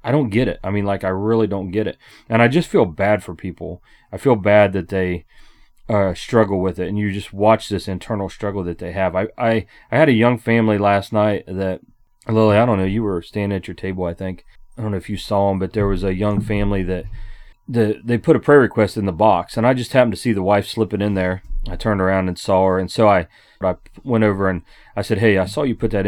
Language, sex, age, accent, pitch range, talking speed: English, male, 30-49, American, 95-110 Hz, 265 wpm